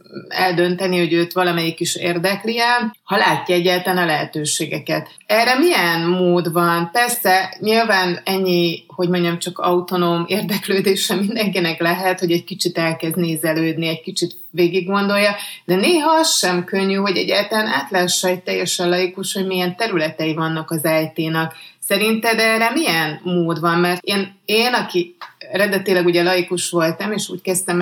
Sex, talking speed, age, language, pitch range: female, 145 wpm, 30-49, Hungarian, 170-200 Hz